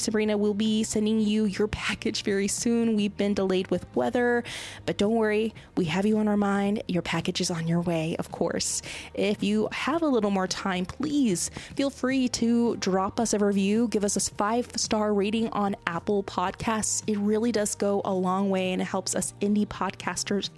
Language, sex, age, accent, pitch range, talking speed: English, female, 20-39, American, 200-235 Hz, 195 wpm